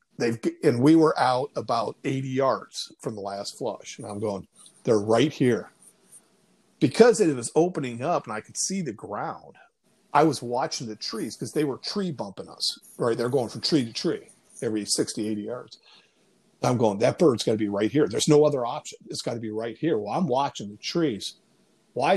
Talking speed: 205 wpm